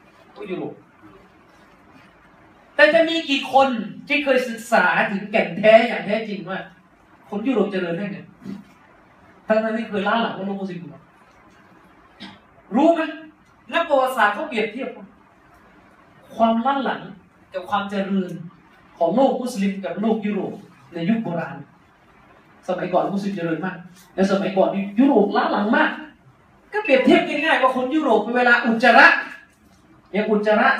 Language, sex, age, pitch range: Thai, male, 30-49, 185-260 Hz